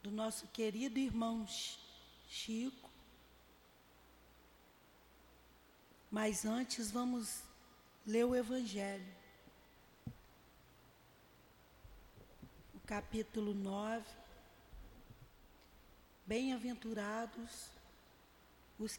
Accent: Brazilian